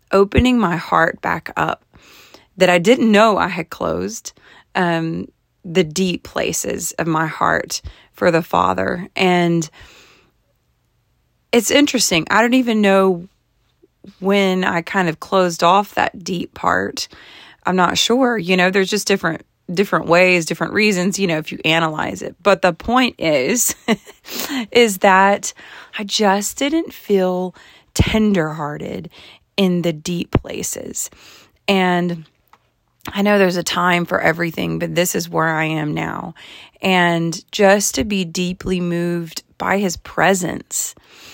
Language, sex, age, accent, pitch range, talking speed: English, female, 30-49, American, 165-200 Hz, 140 wpm